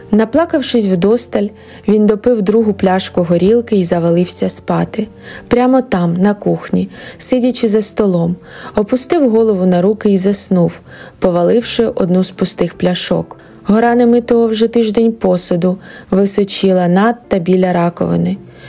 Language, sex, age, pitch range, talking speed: Ukrainian, female, 20-39, 185-225 Hz, 120 wpm